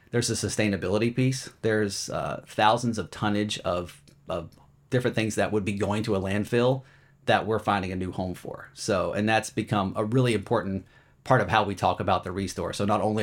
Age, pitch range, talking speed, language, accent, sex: 30-49, 95-115 Hz, 205 wpm, English, American, male